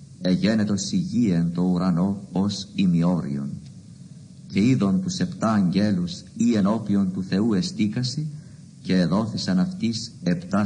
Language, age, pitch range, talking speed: Greek, 50-69, 100-145 Hz, 115 wpm